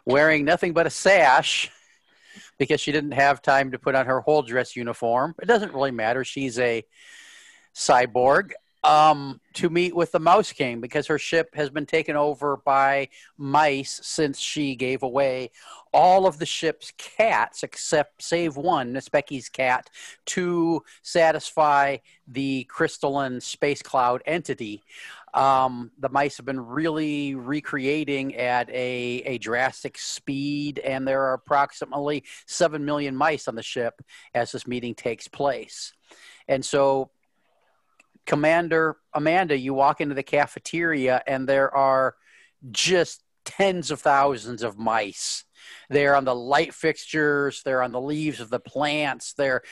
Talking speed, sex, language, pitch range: 145 wpm, male, English, 130-150 Hz